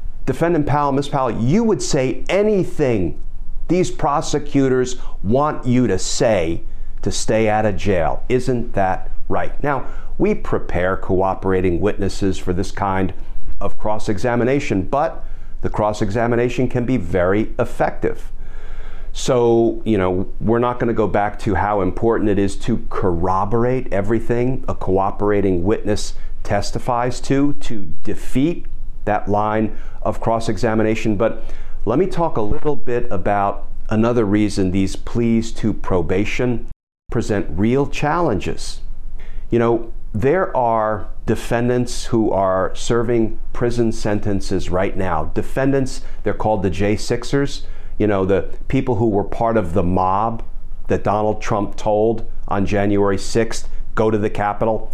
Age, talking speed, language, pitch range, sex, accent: 40-59, 130 wpm, English, 100-120 Hz, male, American